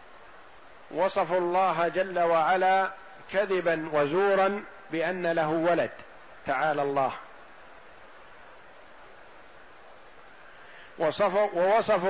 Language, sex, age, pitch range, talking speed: Arabic, male, 50-69, 165-195 Hz, 60 wpm